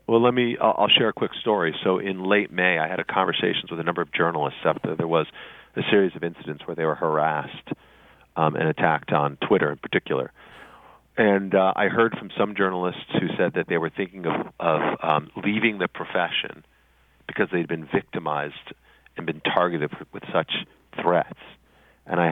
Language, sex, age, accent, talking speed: English, male, 40-59, American, 190 wpm